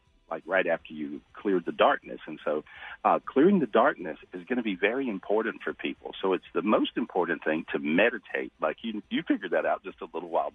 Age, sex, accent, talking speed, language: 50-69, male, American, 230 wpm, English